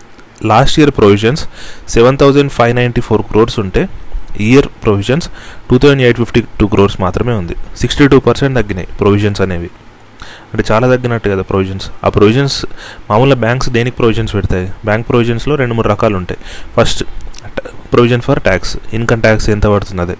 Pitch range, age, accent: 100-120 Hz, 30-49, native